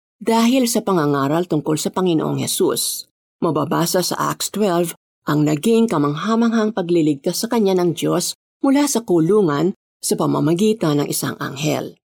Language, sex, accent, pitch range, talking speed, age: Filipino, female, native, 160-220 Hz, 135 wpm, 50-69